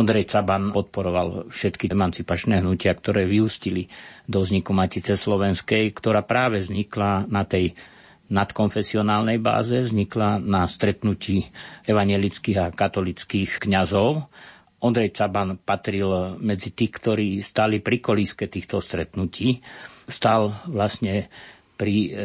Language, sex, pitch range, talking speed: Slovak, male, 95-110 Hz, 110 wpm